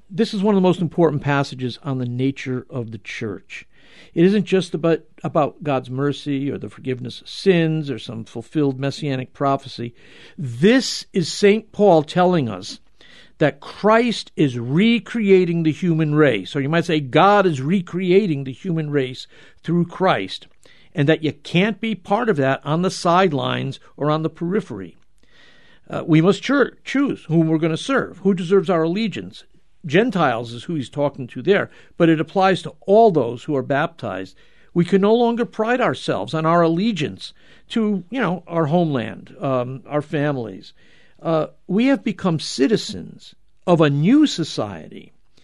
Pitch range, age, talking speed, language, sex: 140-195 Hz, 50-69, 170 wpm, English, male